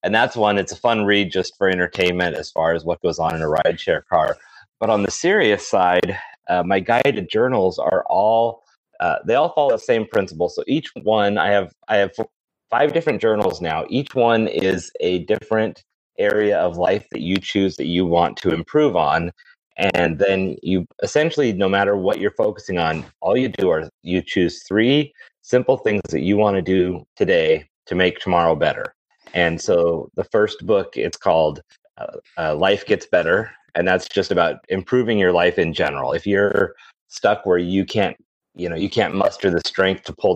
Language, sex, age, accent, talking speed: English, male, 30-49, American, 195 wpm